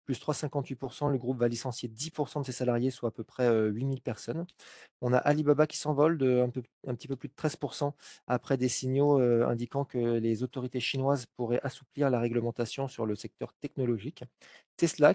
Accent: French